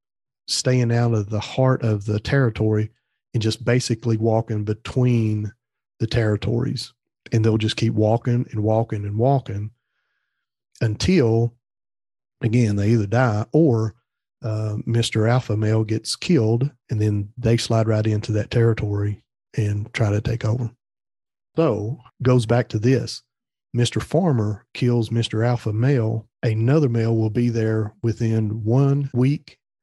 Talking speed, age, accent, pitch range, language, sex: 135 wpm, 40-59, American, 110-125 Hz, English, male